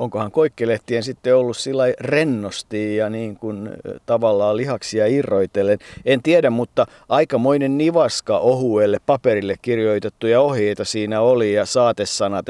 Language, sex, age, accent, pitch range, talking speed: Finnish, male, 50-69, native, 105-130 Hz, 110 wpm